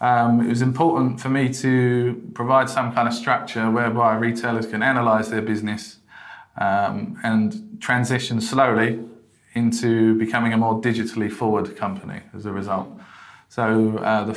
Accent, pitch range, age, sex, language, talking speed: British, 110-120 Hz, 20-39, male, English, 145 wpm